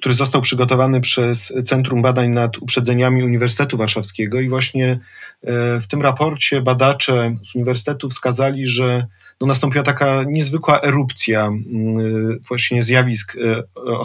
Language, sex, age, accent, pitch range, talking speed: Polish, male, 40-59, native, 125-160 Hz, 115 wpm